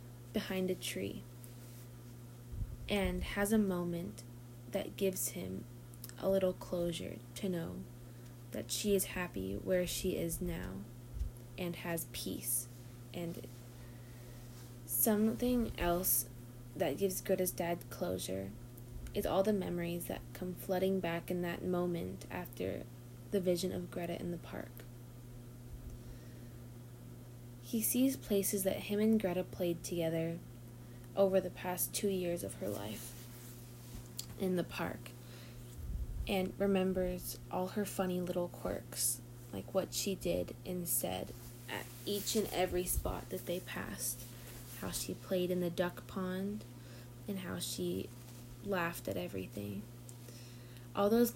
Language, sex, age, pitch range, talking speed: English, female, 20-39, 120-185 Hz, 125 wpm